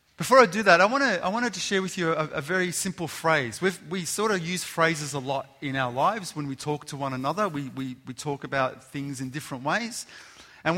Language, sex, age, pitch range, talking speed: English, male, 30-49, 145-190 Hz, 250 wpm